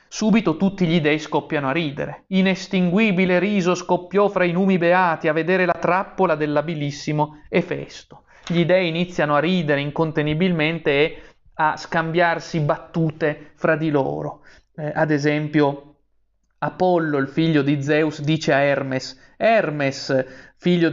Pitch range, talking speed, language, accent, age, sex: 145-175 Hz, 130 wpm, Italian, native, 30-49, male